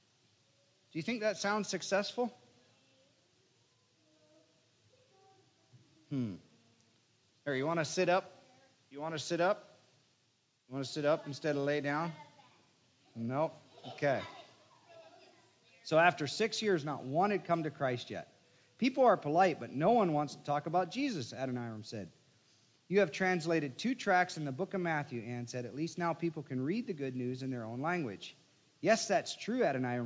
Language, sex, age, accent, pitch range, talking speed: English, male, 40-59, American, 130-180 Hz, 165 wpm